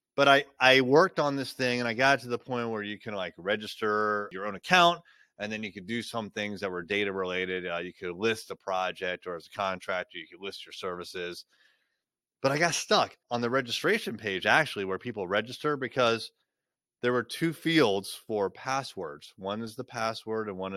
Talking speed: 210 wpm